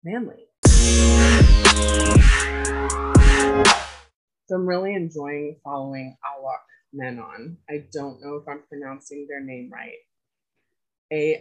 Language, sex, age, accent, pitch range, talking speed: English, female, 20-39, American, 135-160 Hz, 95 wpm